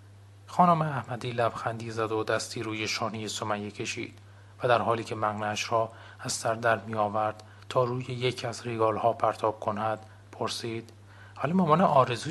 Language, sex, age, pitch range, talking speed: English, male, 30-49, 105-120 Hz, 155 wpm